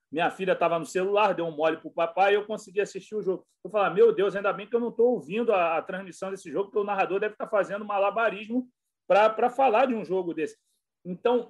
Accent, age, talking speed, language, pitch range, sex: Brazilian, 40-59, 245 wpm, Portuguese, 180-225 Hz, male